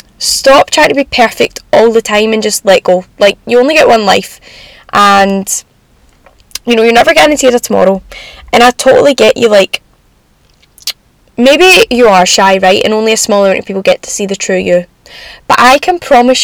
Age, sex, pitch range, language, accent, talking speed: 10-29, female, 200-250 Hz, English, British, 195 wpm